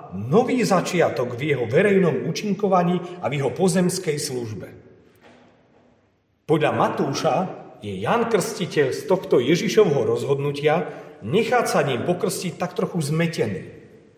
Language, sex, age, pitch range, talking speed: Slovak, male, 40-59, 140-210 Hz, 115 wpm